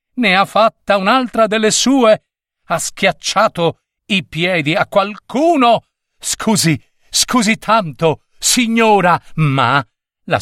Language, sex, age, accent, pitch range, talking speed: Italian, male, 50-69, native, 135-215 Hz, 105 wpm